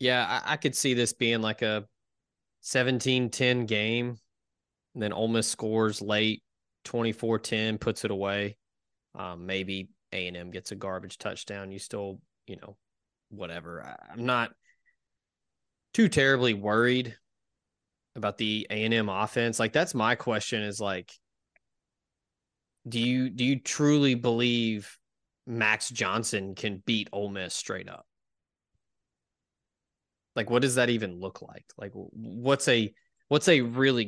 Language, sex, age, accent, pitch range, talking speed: English, male, 20-39, American, 100-120 Hz, 135 wpm